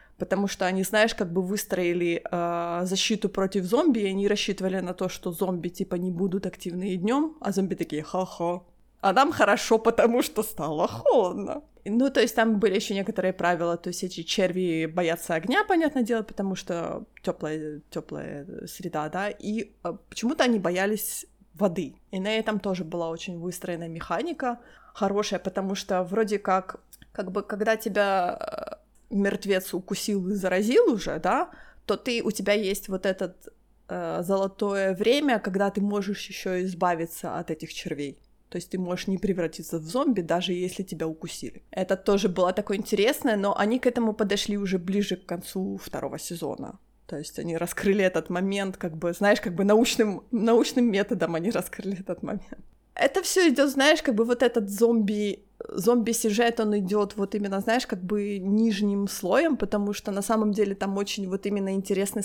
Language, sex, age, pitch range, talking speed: Ukrainian, female, 20-39, 185-220 Hz, 175 wpm